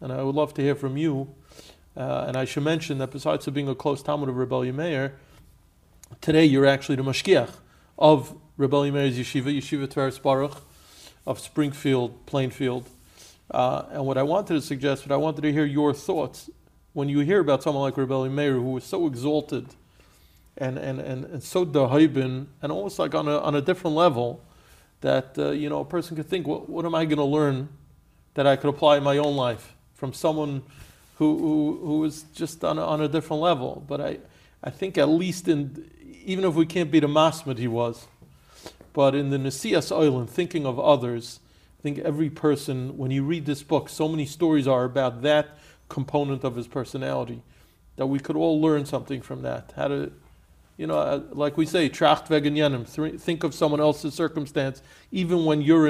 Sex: male